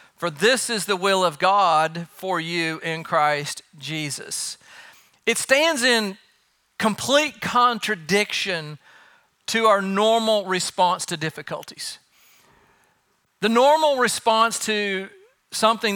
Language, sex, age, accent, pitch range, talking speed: English, male, 40-59, American, 170-210 Hz, 105 wpm